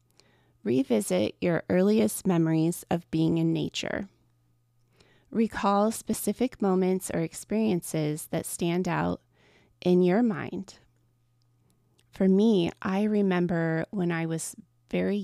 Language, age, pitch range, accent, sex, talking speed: English, 20-39, 155-195 Hz, American, female, 105 wpm